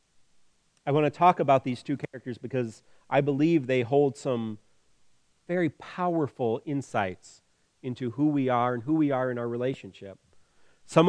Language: English